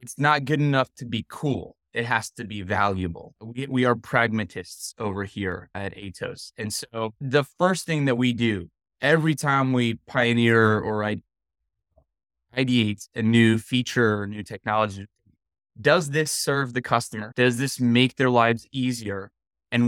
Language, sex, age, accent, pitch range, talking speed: English, male, 20-39, American, 110-140 Hz, 160 wpm